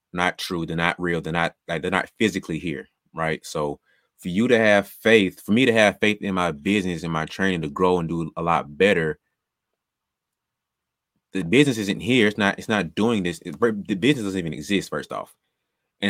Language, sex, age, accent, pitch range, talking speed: English, male, 20-39, American, 80-100 Hz, 210 wpm